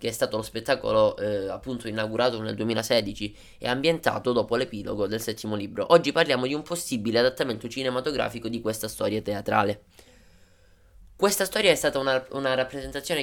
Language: Italian